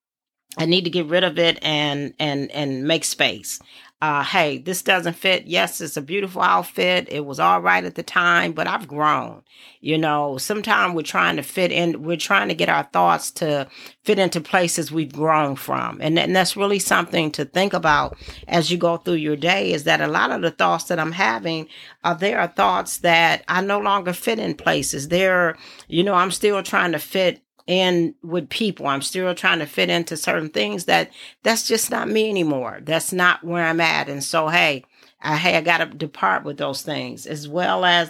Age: 40-59